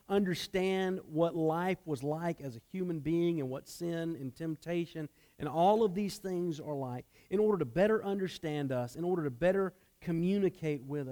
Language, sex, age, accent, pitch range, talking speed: English, male, 40-59, American, 130-170 Hz, 180 wpm